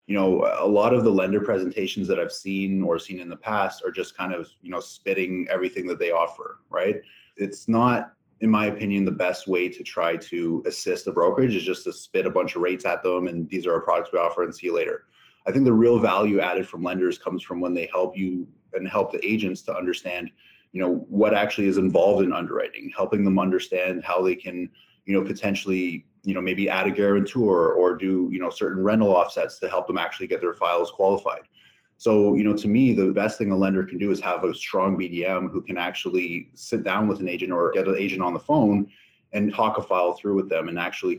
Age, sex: 30-49, male